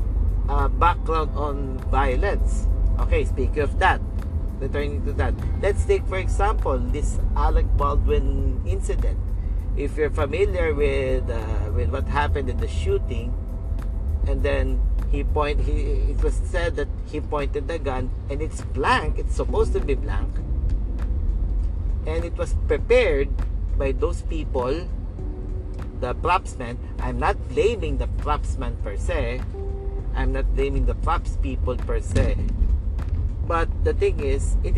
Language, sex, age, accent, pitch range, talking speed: English, male, 50-69, Filipino, 75-90 Hz, 140 wpm